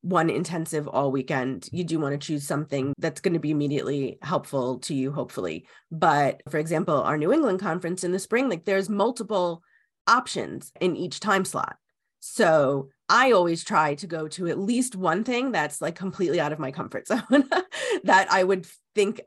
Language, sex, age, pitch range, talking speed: English, female, 30-49, 150-190 Hz, 185 wpm